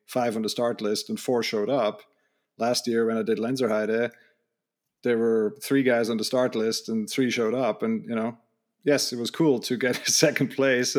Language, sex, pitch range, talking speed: English, male, 115-145 Hz, 215 wpm